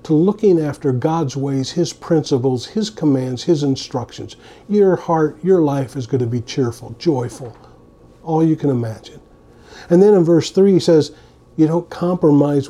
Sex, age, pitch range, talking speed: male, 50-69, 140-175 Hz, 165 wpm